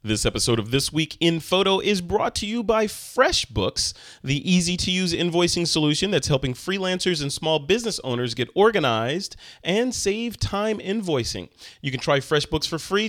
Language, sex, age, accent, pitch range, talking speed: English, male, 30-49, American, 125-175 Hz, 165 wpm